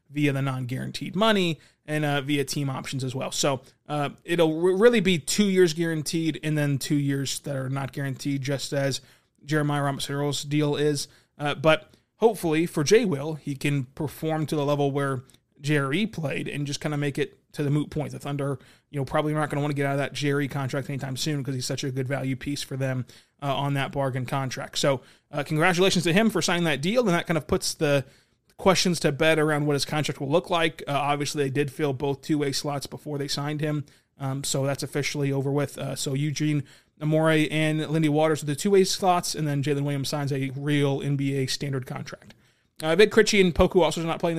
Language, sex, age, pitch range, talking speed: English, male, 20-39, 140-160 Hz, 220 wpm